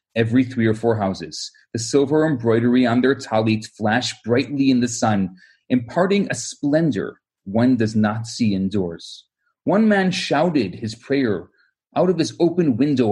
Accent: Canadian